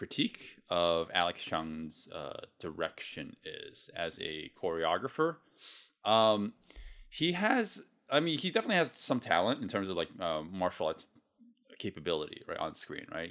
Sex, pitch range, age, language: male, 85-135 Hz, 30-49, English